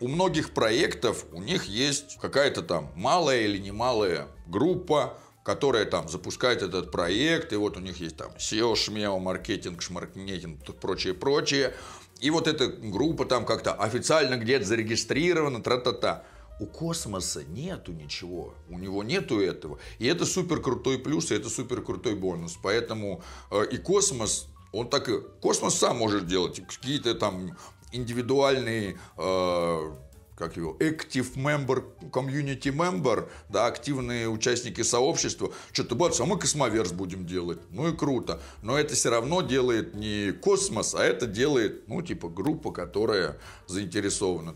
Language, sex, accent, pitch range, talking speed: Russian, male, native, 90-135 Hz, 140 wpm